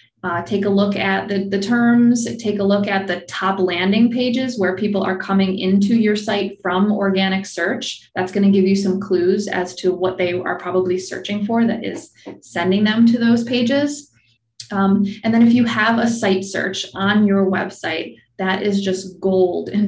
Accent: American